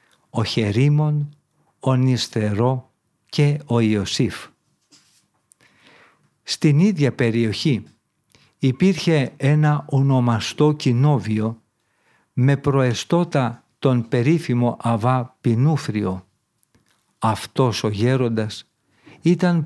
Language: Greek